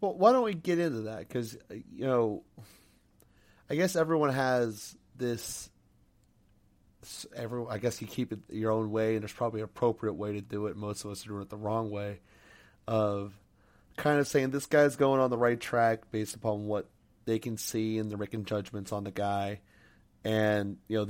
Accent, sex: American, male